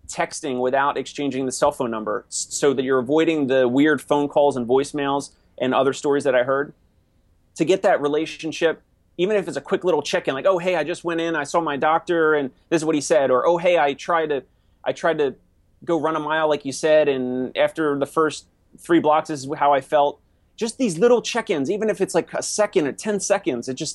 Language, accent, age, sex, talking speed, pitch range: English, American, 30-49, male, 235 wpm, 135-175 Hz